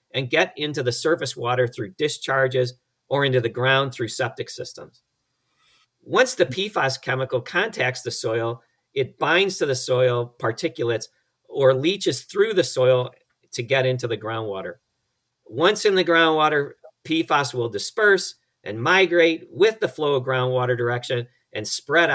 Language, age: English, 50-69